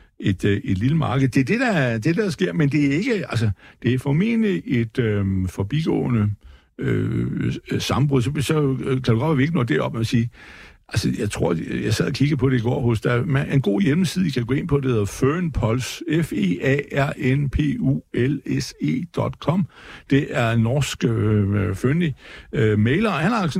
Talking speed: 185 wpm